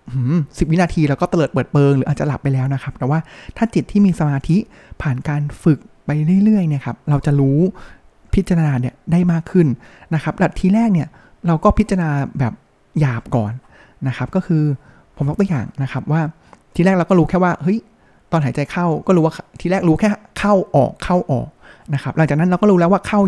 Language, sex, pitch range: Thai, male, 140-180 Hz